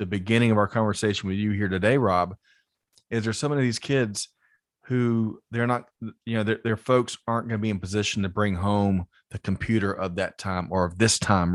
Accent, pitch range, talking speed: American, 100-120 Hz, 215 wpm